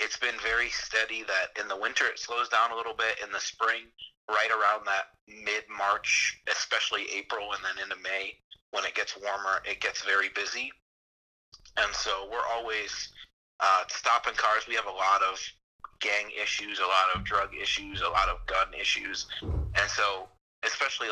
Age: 30-49